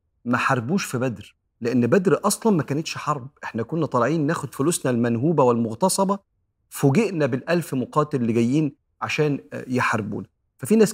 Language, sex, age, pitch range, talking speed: Arabic, male, 40-59, 115-155 Hz, 145 wpm